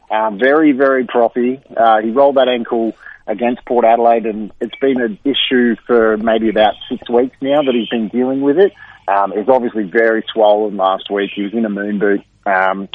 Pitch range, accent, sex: 105-120 Hz, Australian, male